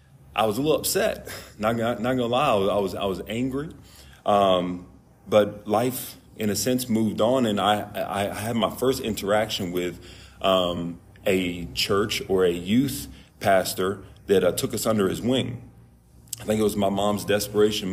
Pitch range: 90-110 Hz